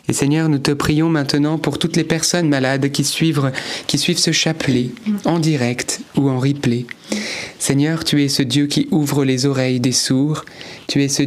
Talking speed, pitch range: 190 wpm, 130-145 Hz